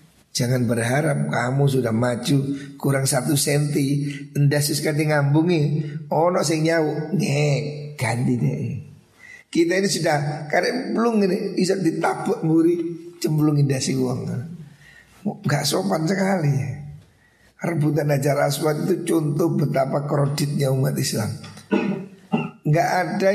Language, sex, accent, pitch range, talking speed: Indonesian, male, native, 140-170 Hz, 100 wpm